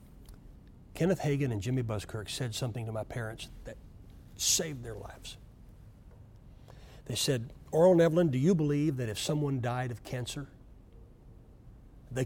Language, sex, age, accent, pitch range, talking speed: English, male, 60-79, American, 115-145 Hz, 135 wpm